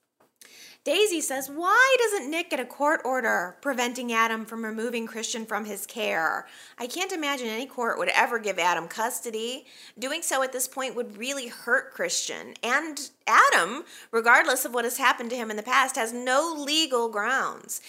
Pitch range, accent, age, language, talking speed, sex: 210-300 Hz, American, 30-49, English, 175 wpm, female